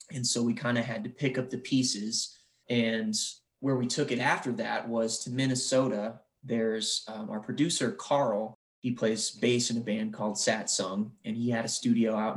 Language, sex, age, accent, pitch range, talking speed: English, male, 20-39, American, 115-140 Hz, 195 wpm